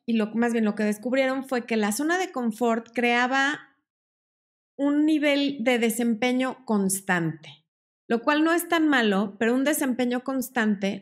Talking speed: 150 wpm